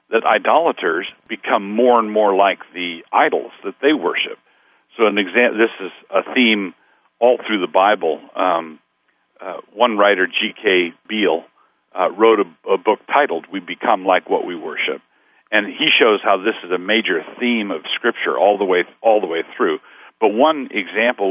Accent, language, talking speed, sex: American, English, 175 wpm, male